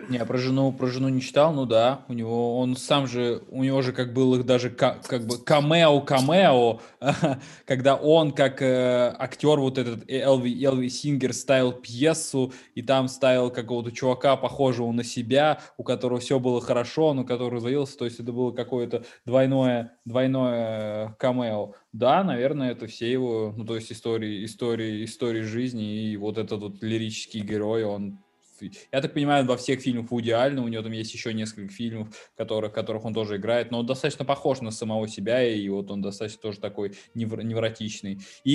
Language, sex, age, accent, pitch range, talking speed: Russian, male, 20-39, native, 115-135 Hz, 175 wpm